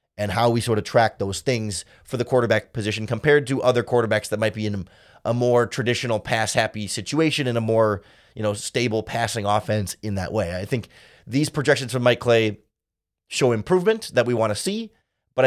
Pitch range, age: 105-130 Hz, 30-49